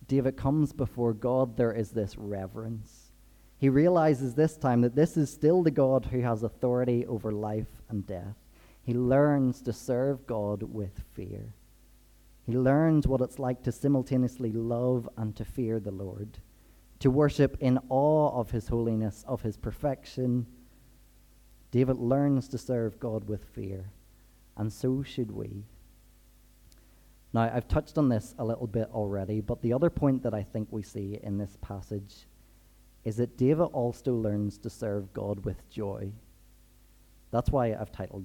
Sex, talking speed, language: male, 160 wpm, English